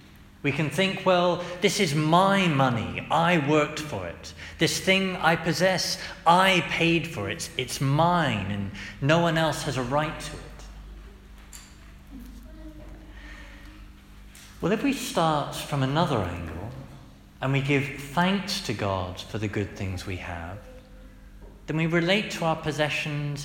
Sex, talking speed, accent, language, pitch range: male, 145 wpm, British, English, 125-170 Hz